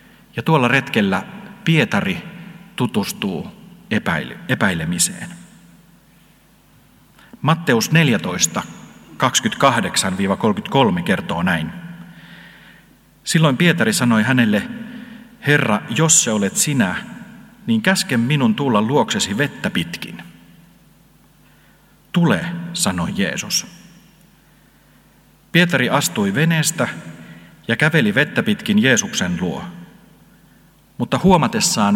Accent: native